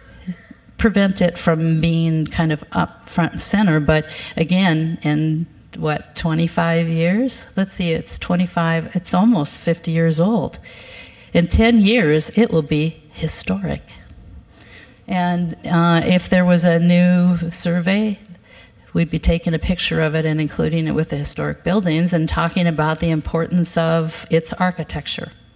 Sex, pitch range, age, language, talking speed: female, 150-175 Hz, 50-69, English, 145 wpm